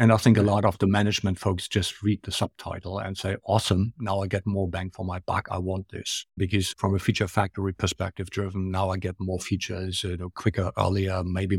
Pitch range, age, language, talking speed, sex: 95-115 Hz, 50-69, English, 230 wpm, male